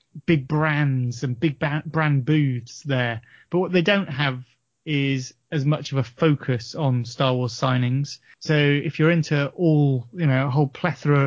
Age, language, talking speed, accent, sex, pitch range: 30-49, English, 170 wpm, British, male, 135-165 Hz